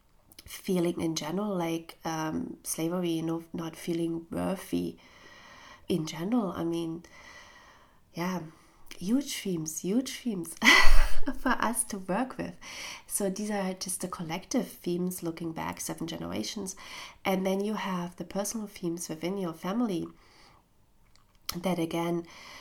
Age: 30-49